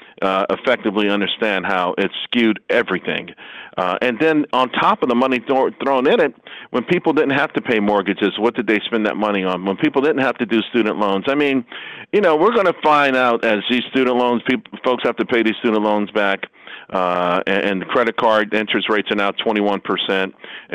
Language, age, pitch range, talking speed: English, 50-69, 105-130 Hz, 210 wpm